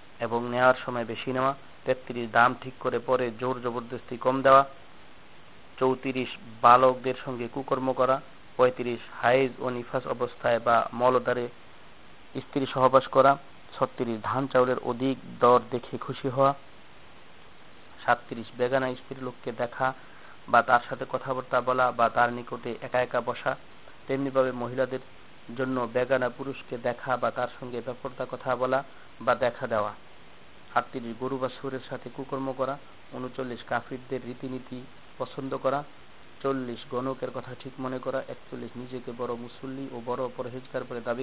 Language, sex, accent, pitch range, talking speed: Bengali, male, native, 125-130 Hz, 110 wpm